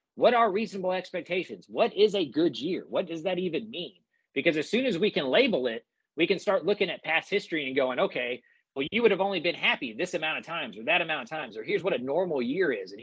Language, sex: English, male